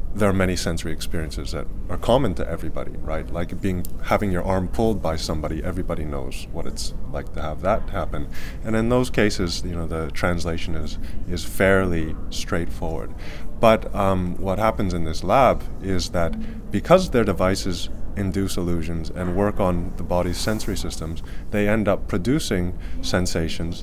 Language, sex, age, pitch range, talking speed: English, male, 30-49, 80-95 Hz, 165 wpm